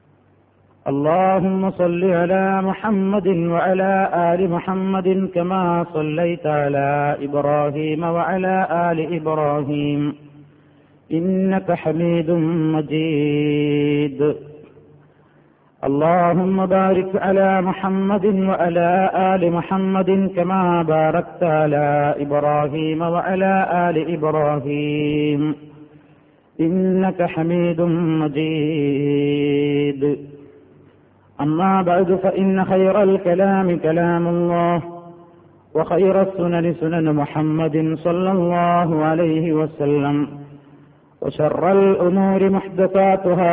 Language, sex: Malayalam, male